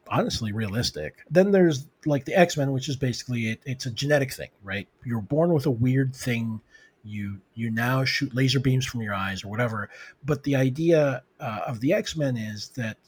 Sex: male